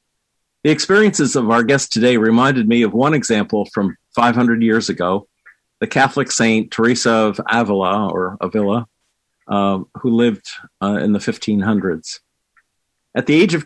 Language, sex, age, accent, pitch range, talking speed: English, male, 50-69, American, 105-125 Hz, 145 wpm